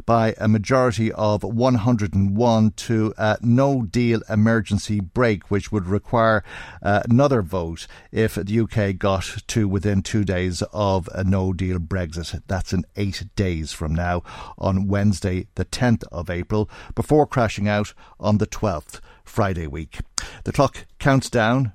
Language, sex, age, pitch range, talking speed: English, male, 50-69, 95-115 Hz, 145 wpm